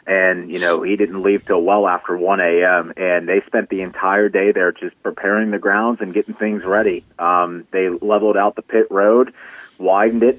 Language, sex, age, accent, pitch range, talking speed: English, male, 30-49, American, 100-115 Hz, 200 wpm